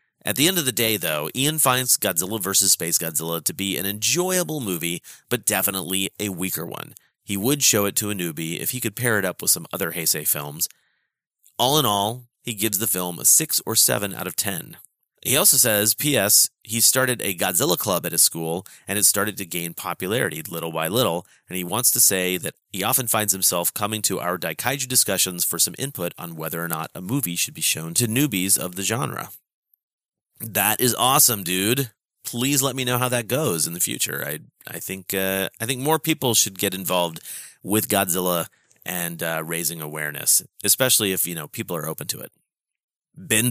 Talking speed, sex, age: 205 wpm, male, 30-49